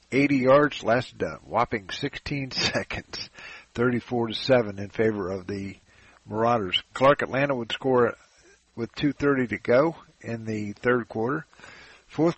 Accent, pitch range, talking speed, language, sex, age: American, 100-130 Hz, 140 wpm, English, male, 50-69